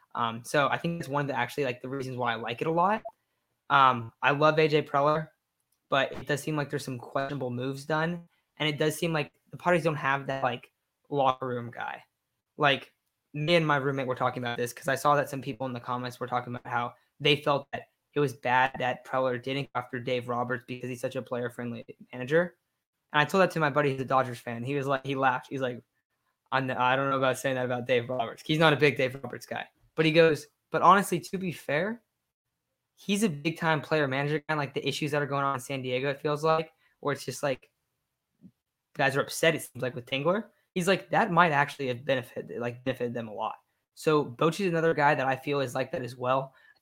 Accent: American